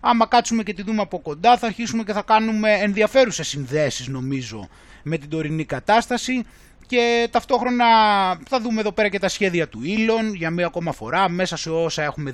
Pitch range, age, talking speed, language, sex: 160-225 Hz, 20-39, 185 wpm, Greek, male